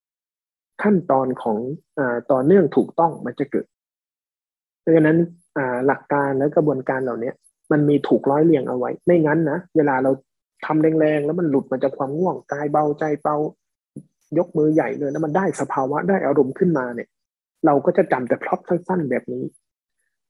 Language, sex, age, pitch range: Thai, male, 20-39, 135-170 Hz